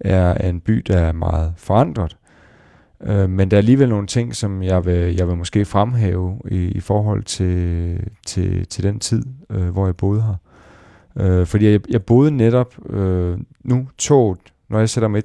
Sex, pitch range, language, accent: male, 90-105 Hz, Danish, native